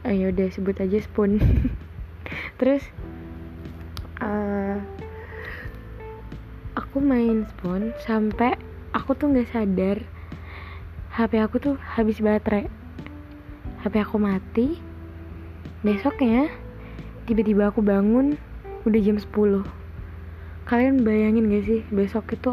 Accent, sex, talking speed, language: native, female, 95 wpm, Indonesian